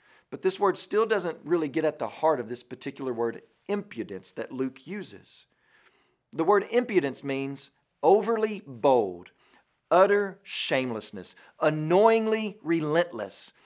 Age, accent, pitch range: 40-59, American, 135-185 Hz